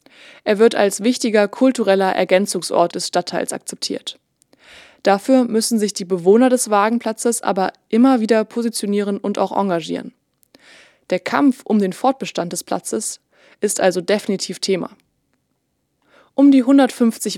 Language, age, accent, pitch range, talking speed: German, 20-39, German, 190-230 Hz, 130 wpm